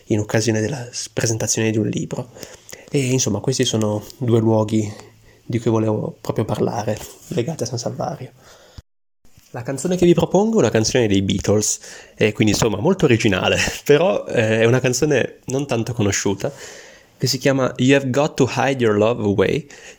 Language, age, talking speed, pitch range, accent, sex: Italian, 20-39, 170 wpm, 105-125 Hz, native, male